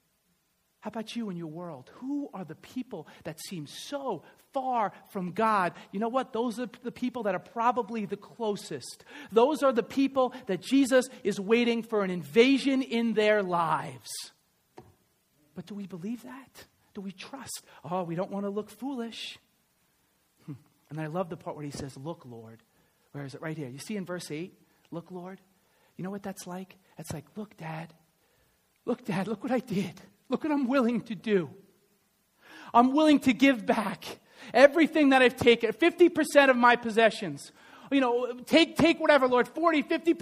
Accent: American